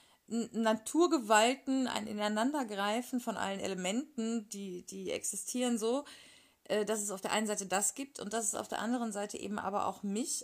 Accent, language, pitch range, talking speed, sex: German, German, 200-250 Hz, 165 wpm, female